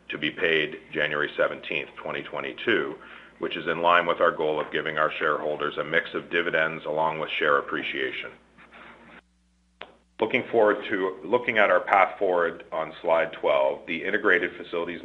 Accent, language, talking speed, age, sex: American, English, 155 wpm, 40-59, male